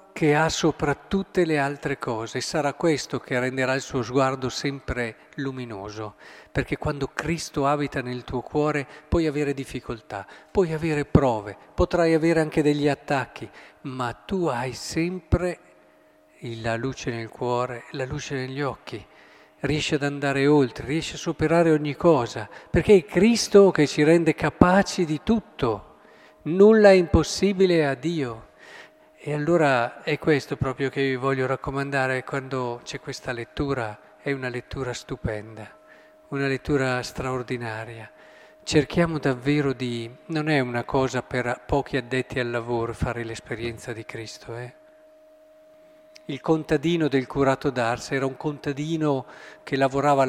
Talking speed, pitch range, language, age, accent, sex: 140 wpm, 125-155 Hz, Italian, 50-69, native, male